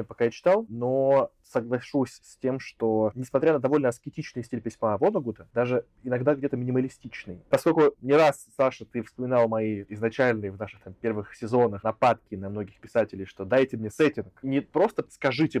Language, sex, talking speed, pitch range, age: Russian, male, 165 wpm, 110-140 Hz, 20-39